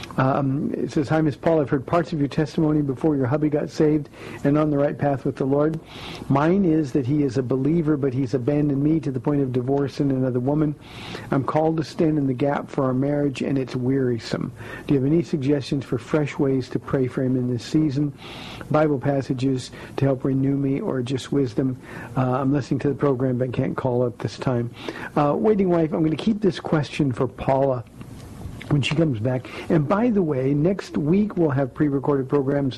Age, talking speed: 50-69, 215 wpm